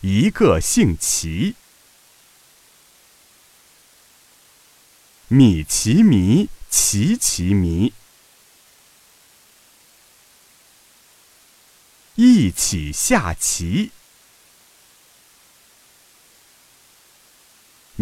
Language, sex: Chinese, male